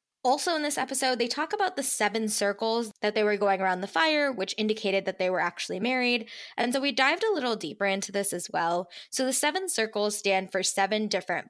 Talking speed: 225 wpm